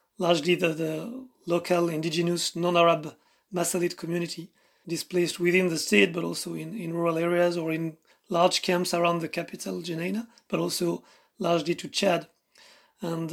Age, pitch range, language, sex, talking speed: 30-49, 170-185 Hz, English, male, 145 wpm